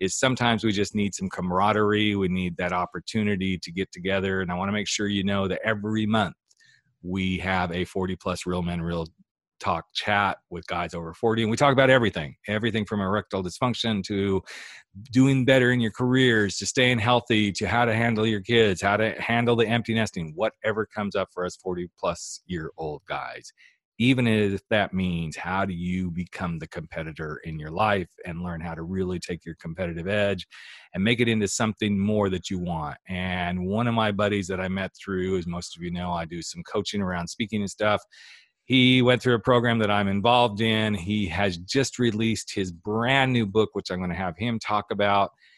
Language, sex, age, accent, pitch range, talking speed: English, male, 40-59, American, 90-115 Hz, 205 wpm